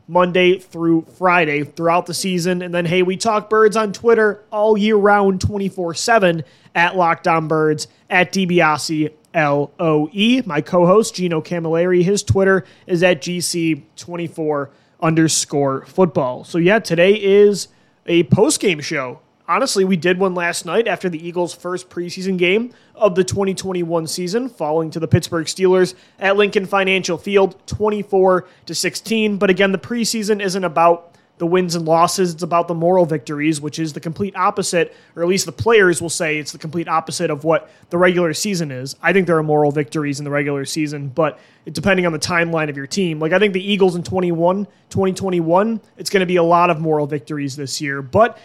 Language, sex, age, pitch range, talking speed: English, male, 20-39, 160-190 Hz, 180 wpm